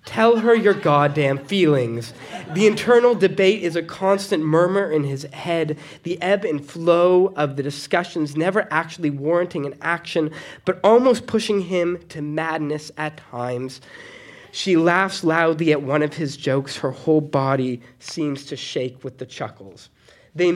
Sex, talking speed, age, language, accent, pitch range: male, 155 wpm, 20-39, English, American, 140-190 Hz